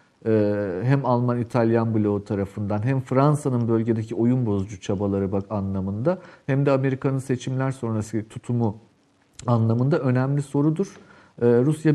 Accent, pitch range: native, 115-150 Hz